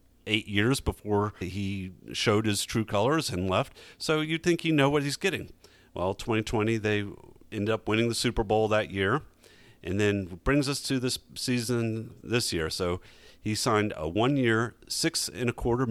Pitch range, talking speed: 100-135 Hz, 165 wpm